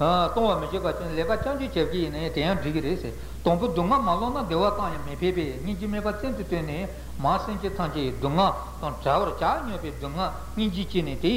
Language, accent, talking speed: Italian, Indian, 95 wpm